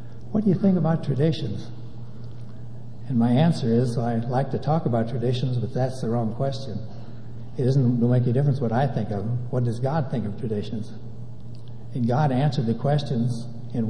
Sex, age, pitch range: male, 60-79, 115-150 Hz